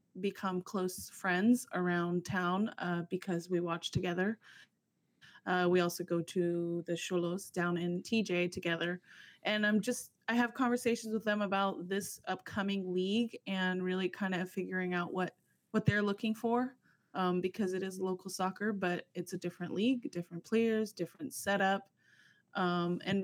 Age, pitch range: 20-39, 175-200 Hz